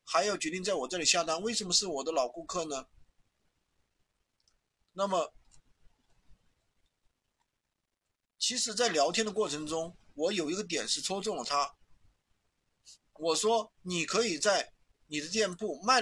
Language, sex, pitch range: Chinese, male, 160-220 Hz